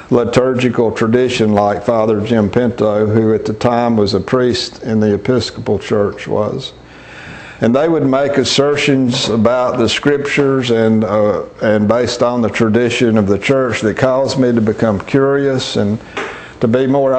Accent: American